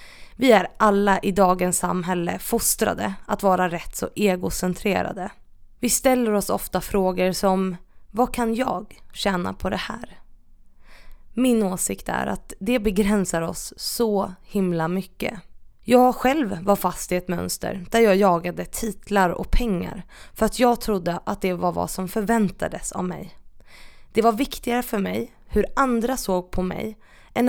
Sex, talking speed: female, 155 wpm